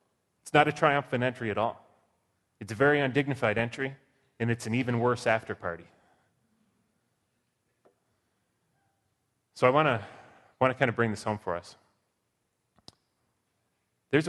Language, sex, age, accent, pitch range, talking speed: English, male, 30-49, American, 110-140 Hz, 135 wpm